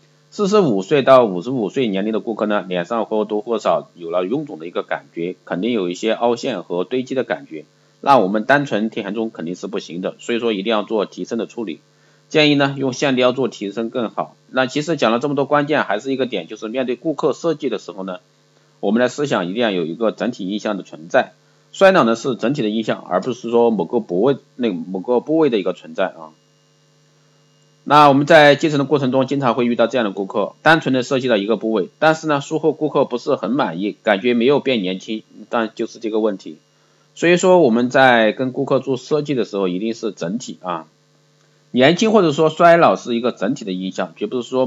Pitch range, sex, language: 110-145 Hz, male, Chinese